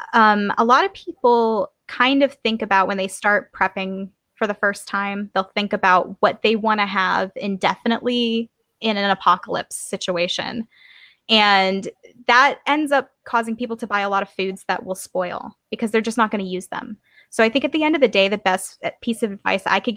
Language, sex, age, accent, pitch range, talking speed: English, female, 20-39, American, 195-245 Hz, 205 wpm